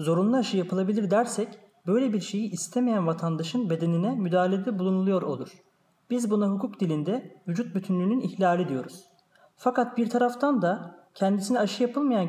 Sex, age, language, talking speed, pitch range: male, 30-49, Turkish, 135 wpm, 185-235 Hz